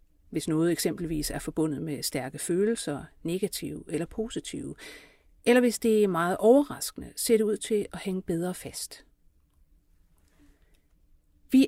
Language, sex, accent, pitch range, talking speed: Danish, female, native, 160-220 Hz, 135 wpm